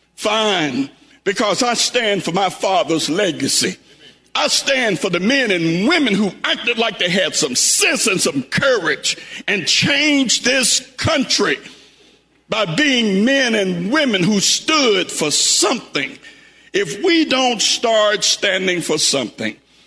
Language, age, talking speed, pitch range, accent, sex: English, 60-79, 135 wpm, 210-290 Hz, American, male